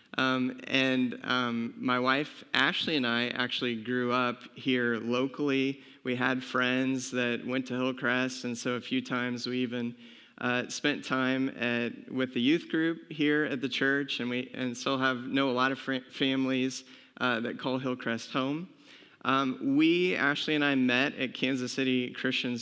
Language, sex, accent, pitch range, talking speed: English, male, American, 120-135 Hz, 170 wpm